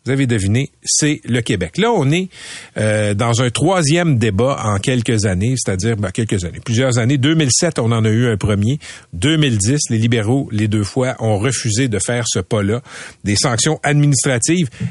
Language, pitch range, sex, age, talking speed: French, 110-150 Hz, male, 50-69, 180 wpm